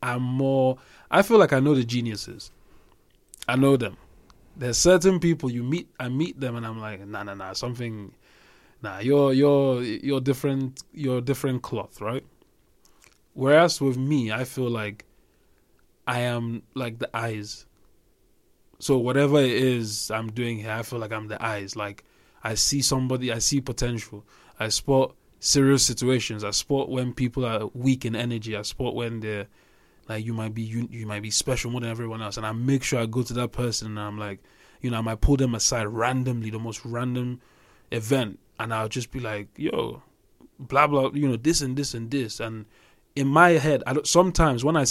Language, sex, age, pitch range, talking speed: English, male, 20-39, 110-135 Hz, 190 wpm